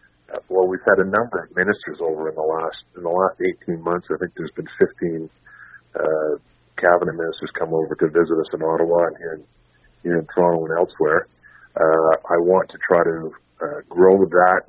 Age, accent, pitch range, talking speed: 40-59, American, 80-90 Hz, 195 wpm